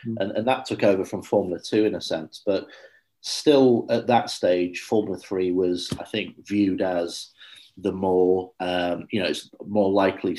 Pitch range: 90-105 Hz